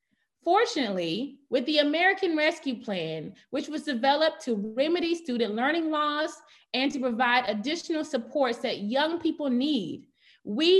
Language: English